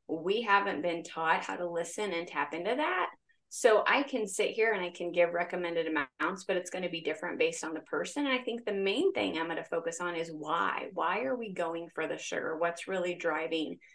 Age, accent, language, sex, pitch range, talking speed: 30-49, American, English, female, 170-220 Hz, 235 wpm